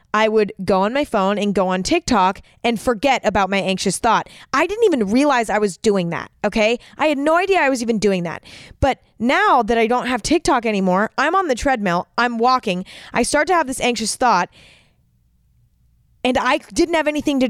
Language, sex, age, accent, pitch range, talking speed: English, female, 20-39, American, 195-285 Hz, 210 wpm